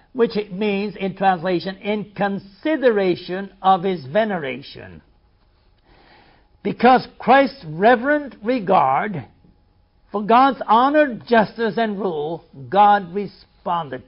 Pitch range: 185-230 Hz